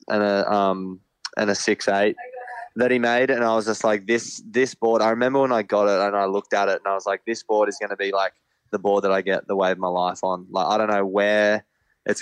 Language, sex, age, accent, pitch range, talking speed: English, male, 20-39, Australian, 100-115 Hz, 270 wpm